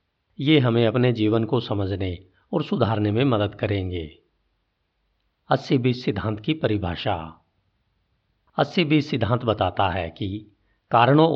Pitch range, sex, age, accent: 100-130 Hz, male, 50-69, native